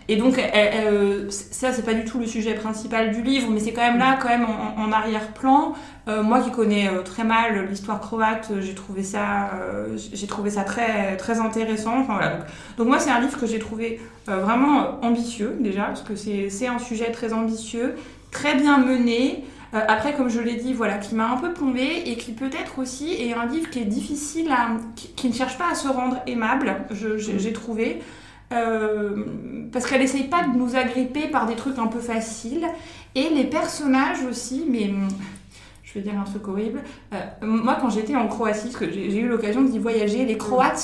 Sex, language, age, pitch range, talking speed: female, French, 20-39, 215-260 Hz, 190 wpm